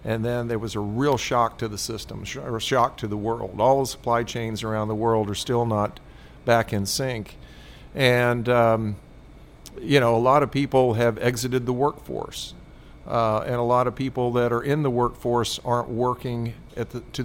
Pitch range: 110-130 Hz